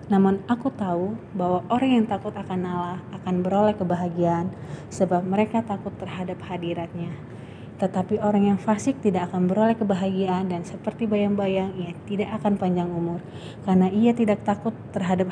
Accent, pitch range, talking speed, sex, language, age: native, 175-200 Hz, 150 wpm, female, Indonesian, 20-39